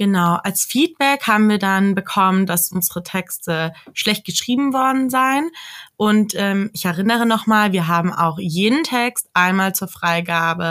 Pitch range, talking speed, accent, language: 175-235 Hz, 150 wpm, German, German